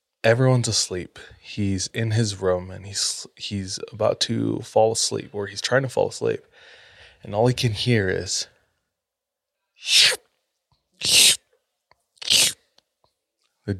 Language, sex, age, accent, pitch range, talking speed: English, male, 20-39, American, 95-115 Hz, 115 wpm